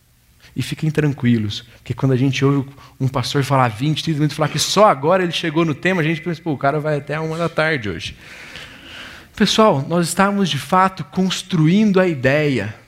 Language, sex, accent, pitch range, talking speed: Portuguese, male, Brazilian, 125-175 Hz, 195 wpm